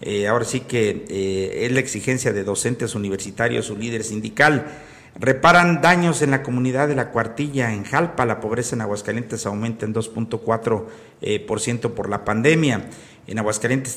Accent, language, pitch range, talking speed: Mexican, Spanish, 110-140 Hz, 170 wpm